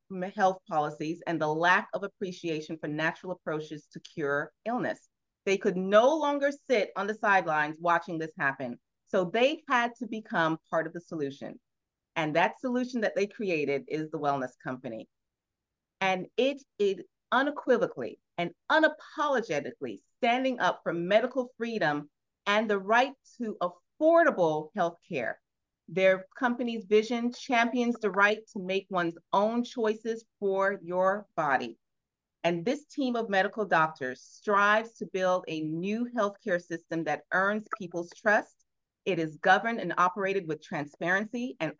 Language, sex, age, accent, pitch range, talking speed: English, female, 30-49, American, 165-225 Hz, 145 wpm